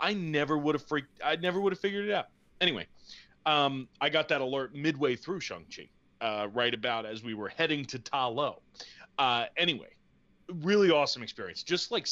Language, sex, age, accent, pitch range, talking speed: English, male, 30-49, American, 120-155 Hz, 190 wpm